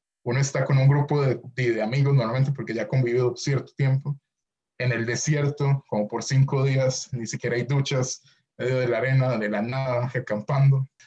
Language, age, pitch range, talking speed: Spanish, 20-39, 125-145 Hz, 190 wpm